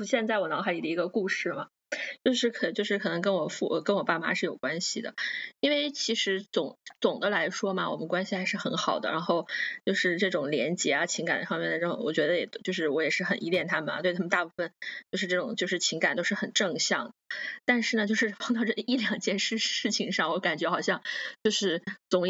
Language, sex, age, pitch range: Chinese, female, 20-39, 185-240 Hz